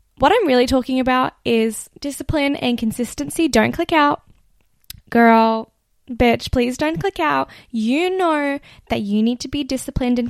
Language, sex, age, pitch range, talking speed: English, female, 10-29, 225-290 Hz, 155 wpm